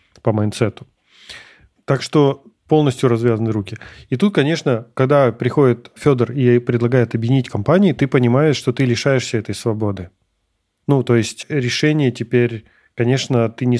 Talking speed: 140 wpm